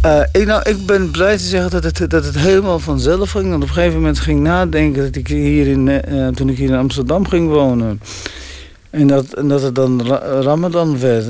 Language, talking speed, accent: Dutch, 220 wpm, Dutch